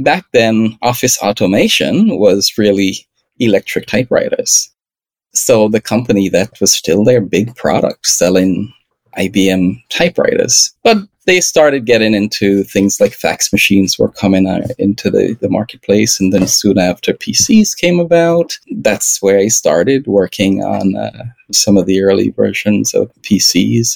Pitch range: 100-140 Hz